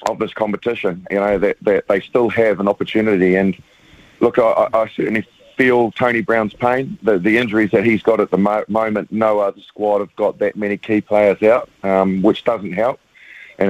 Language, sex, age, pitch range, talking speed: English, male, 40-59, 95-105 Hz, 195 wpm